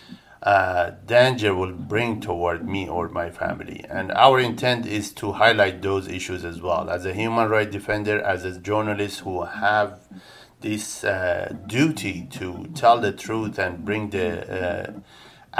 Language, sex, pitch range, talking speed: English, male, 100-120 Hz, 155 wpm